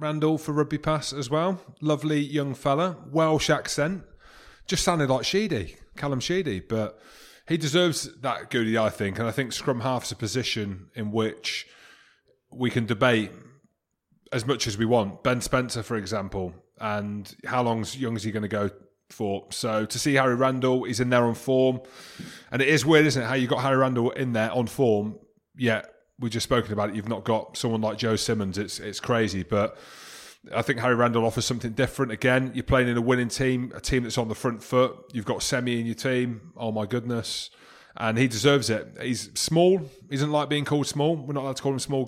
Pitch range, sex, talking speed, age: 110-140 Hz, male, 210 wpm, 30-49